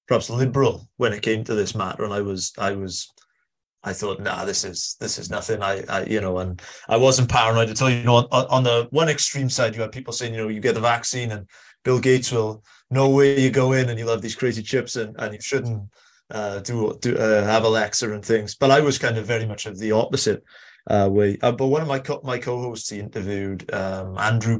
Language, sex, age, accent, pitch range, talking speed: English, male, 20-39, British, 105-120 Hz, 245 wpm